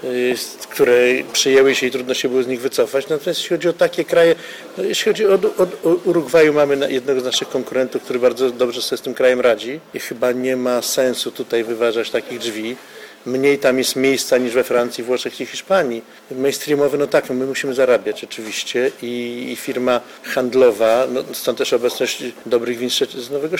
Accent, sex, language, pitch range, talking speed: native, male, Polish, 120-165 Hz, 185 wpm